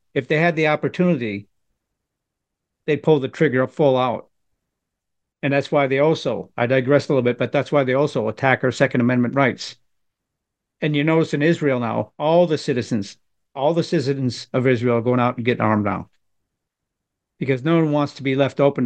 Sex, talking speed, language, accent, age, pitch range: male, 190 wpm, English, American, 50-69, 125-150 Hz